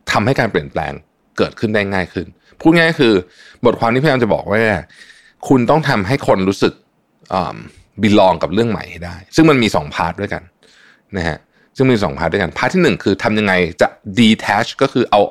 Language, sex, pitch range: Thai, male, 95-135 Hz